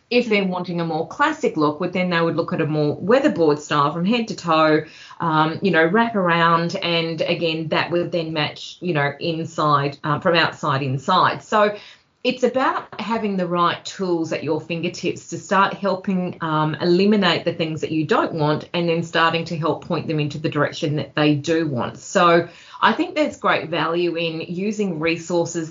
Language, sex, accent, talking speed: English, female, Australian, 195 wpm